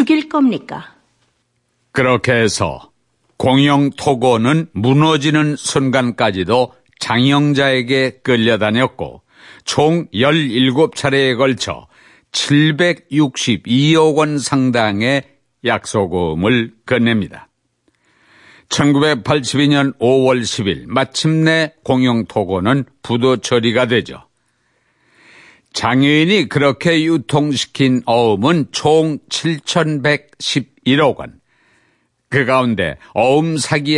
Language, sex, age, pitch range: Korean, male, 50-69, 125-150 Hz